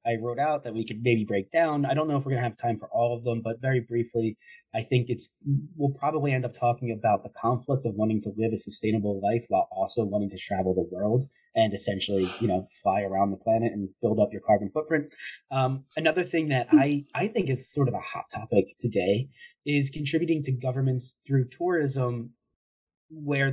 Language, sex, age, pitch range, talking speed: English, male, 20-39, 105-135 Hz, 215 wpm